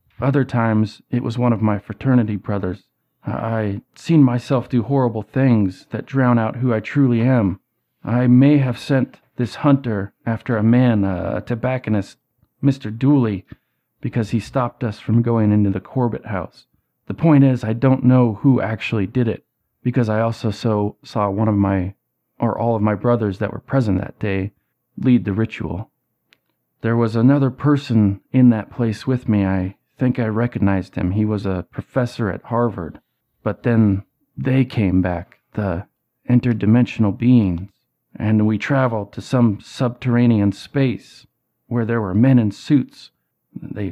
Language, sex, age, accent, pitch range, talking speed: English, male, 40-59, American, 105-130 Hz, 160 wpm